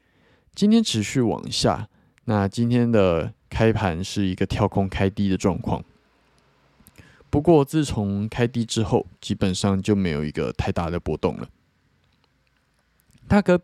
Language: Chinese